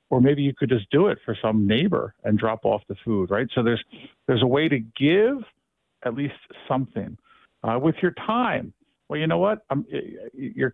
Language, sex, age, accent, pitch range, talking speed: English, male, 50-69, American, 115-165 Hz, 200 wpm